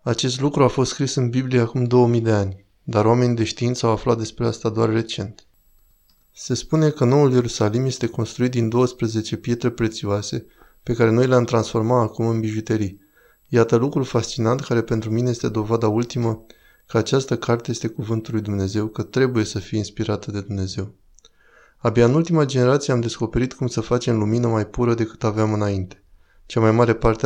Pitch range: 110-125 Hz